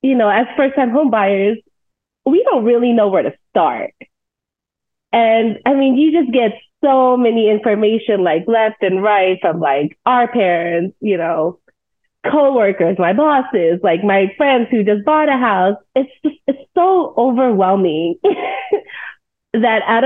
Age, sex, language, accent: 20-39, female, English, American